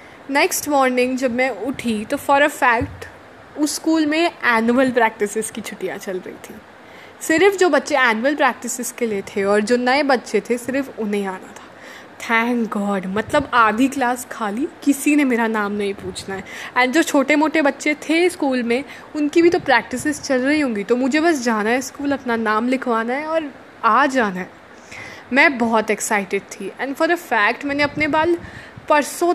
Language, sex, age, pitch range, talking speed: Hindi, female, 20-39, 230-290 Hz, 180 wpm